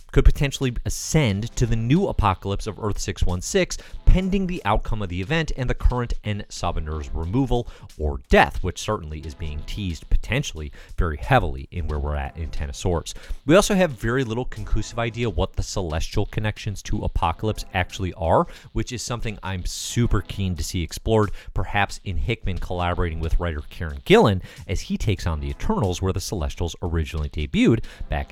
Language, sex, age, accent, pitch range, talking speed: English, male, 30-49, American, 85-125 Hz, 170 wpm